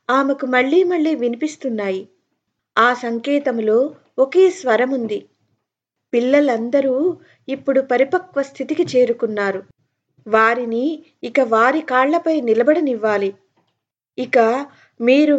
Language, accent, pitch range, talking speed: Telugu, native, 230-285 Hz, 80 wpm